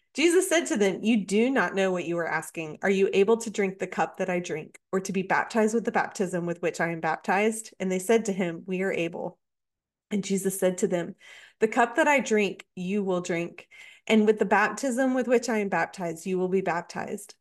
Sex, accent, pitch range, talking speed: female, American, 180-230 Hz, 235 wpm